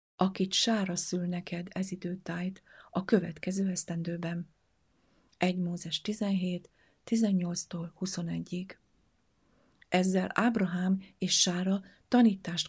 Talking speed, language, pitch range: 90 wpm, Hungarian, 170-195 Hz